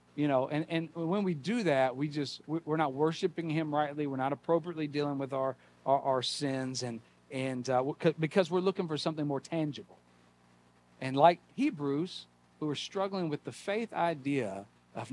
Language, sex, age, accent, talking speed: English, male, 50-69, American, 180 wpm